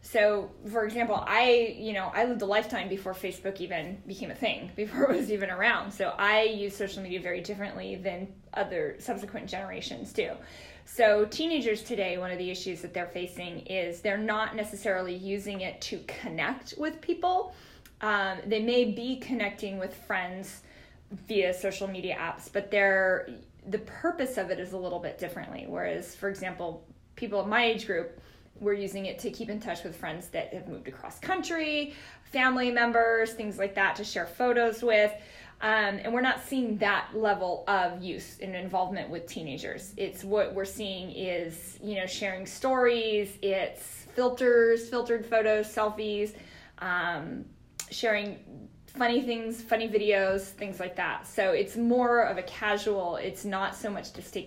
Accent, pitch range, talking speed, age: American, 190-230 Hz, 170 wpm, 10-29